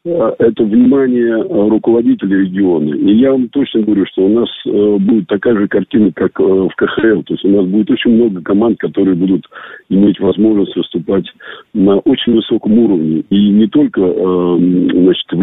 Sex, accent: male, native